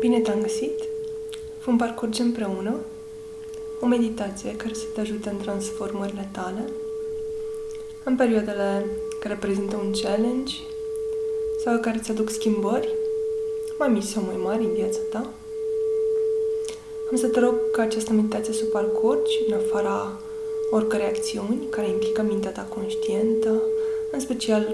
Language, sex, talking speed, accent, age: Romanian, female, 135 wpm, native, 20-39